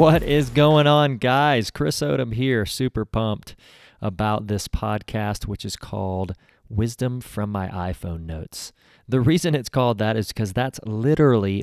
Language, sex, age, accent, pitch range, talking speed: English, male, 30-49, American, 95-115 Hz, 155 wpm